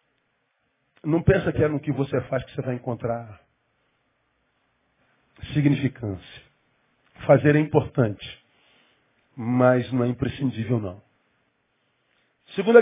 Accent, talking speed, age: Brazilian, 105 wpm, 40-59